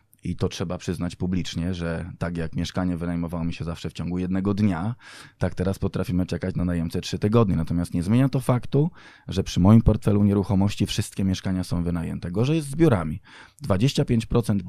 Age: 20-39